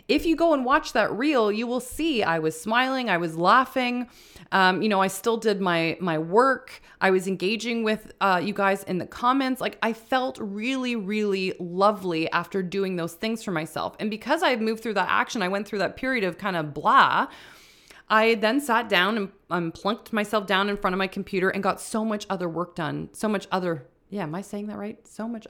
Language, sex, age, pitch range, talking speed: English, female, 20-39, 180-235 Hz, 225 wpm